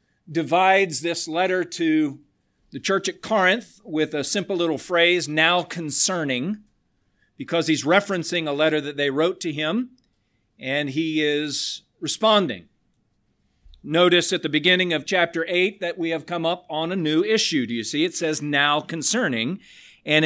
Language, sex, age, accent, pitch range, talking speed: English, male, 40-59, American, 150-190 Hz, 155 wpm